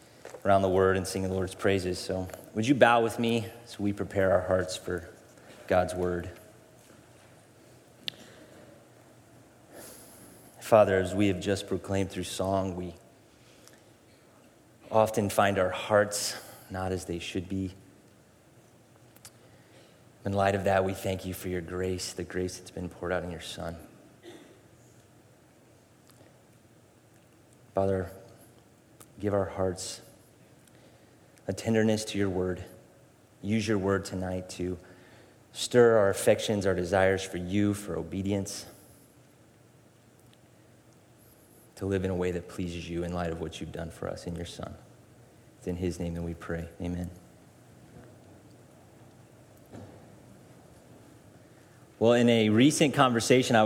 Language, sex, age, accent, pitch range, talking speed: English, male, 30-49, American, 90-115 Hz, 130 wpm